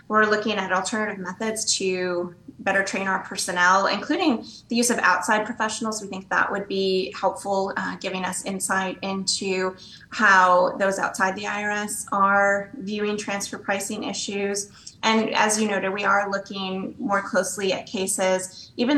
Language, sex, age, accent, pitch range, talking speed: English, female, 20-39, American, 185-210 Hz, 155 wpm